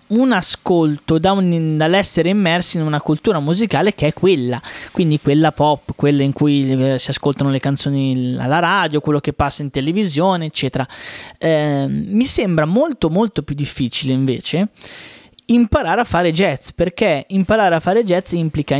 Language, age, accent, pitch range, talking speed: Italian, 20-39, native, 145-190 Hz, 155 wpm